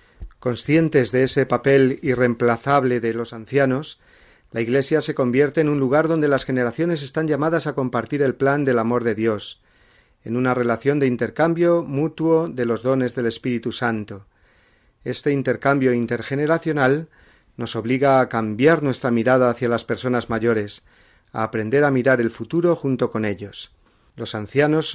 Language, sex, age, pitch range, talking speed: Spanish, male, 40-59, 115-140 Hz, 155 wpm